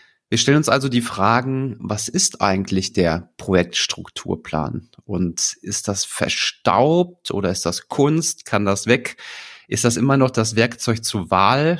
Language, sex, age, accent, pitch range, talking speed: German, male, 40-59, German, 95-130 Hz, 155 wpm